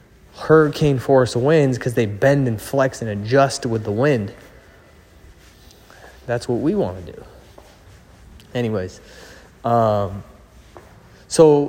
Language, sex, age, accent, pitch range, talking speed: English, male, 20-39, American, 110-135 Hz, 115 wpm